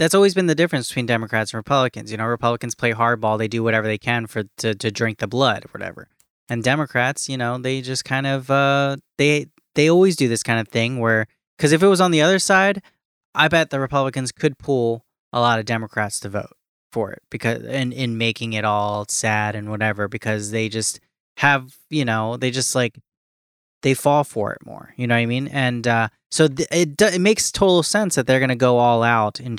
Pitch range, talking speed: 115-145 Hz, 230 wpm